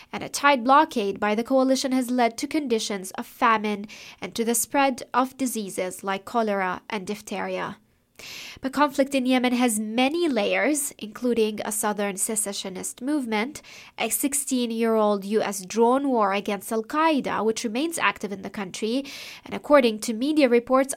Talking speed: 150 wpm